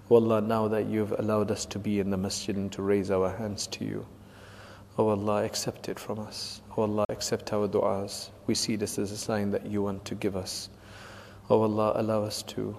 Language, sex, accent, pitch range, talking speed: English, male, South African, 100-110 Hz, 220 wpm